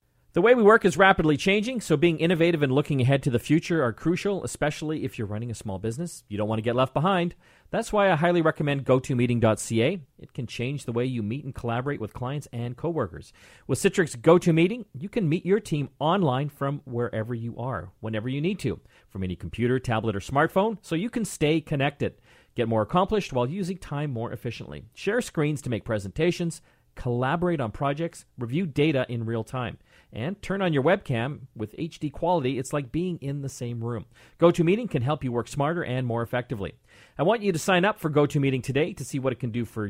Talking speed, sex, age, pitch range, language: 210 wpm, male, 40-59, 125-170 Hz, English